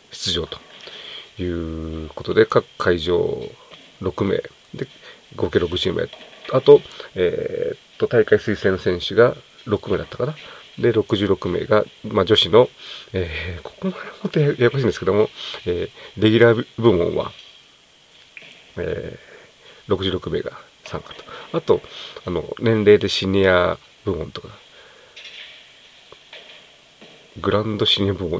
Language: Japanese